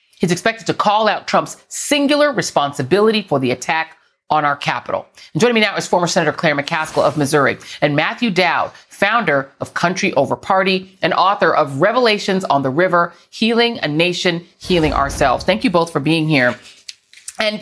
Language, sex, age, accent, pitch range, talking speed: English, female, 40-59, American, 155-215 Hz, 175 wpm